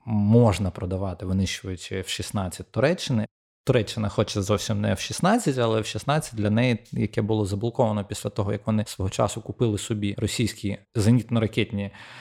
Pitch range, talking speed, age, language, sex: 105-125 Hz, 150 wpm, 20-39, Ukrainian, male